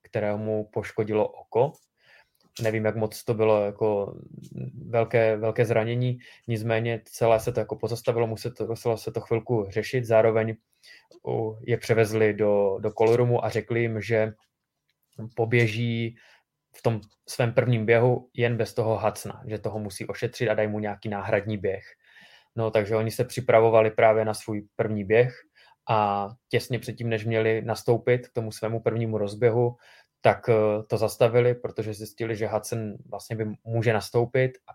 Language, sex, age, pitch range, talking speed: Czech, male, 20-39, 110-120 Hz, 150 wpm